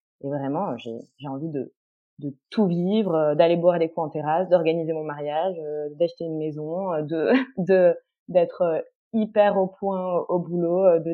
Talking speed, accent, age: 160 wpm, French, 20-39